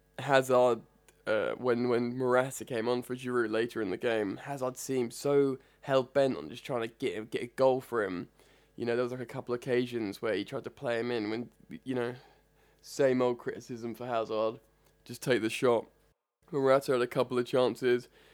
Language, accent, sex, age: English, British, male, 20-39